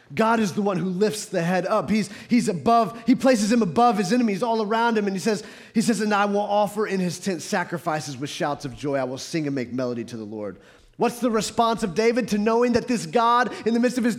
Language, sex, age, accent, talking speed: English, male, 30-49, American, 260 wpm